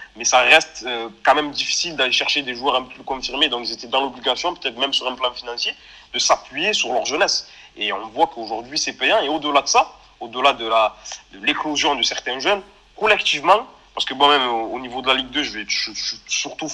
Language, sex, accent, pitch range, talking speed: French, male, French, 125-155 Hz, 220 wpm